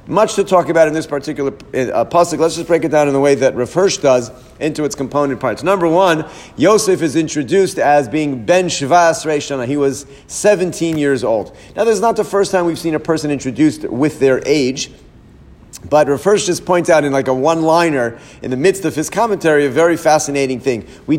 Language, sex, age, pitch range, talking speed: English, male, 40-59, 145-195 Hz, 210 wpm